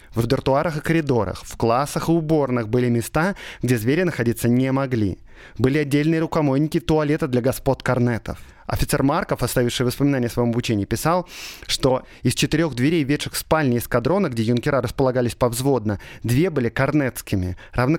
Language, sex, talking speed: Russian, male, 150 wpm